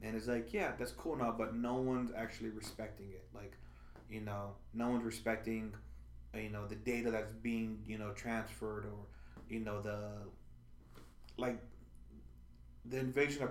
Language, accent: English, American